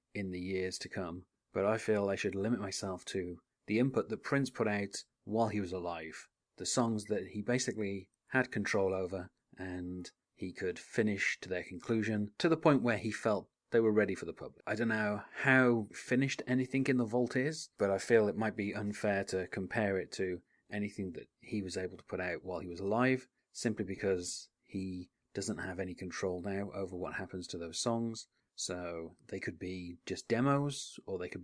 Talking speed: 200 wpm